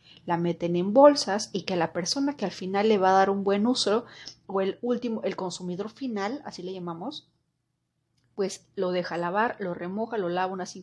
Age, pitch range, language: 30-49, 175-210 Hz, Spanish